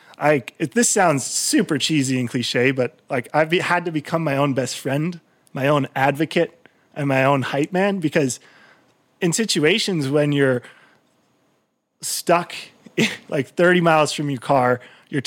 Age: 20-39